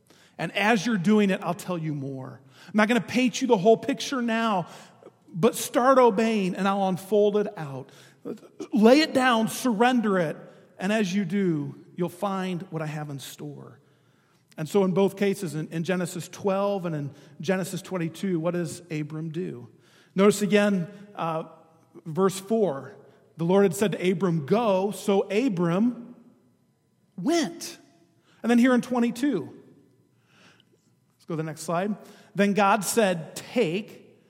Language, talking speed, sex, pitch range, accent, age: English, 155 wpm, male, 160-205 Hz, American, 40-59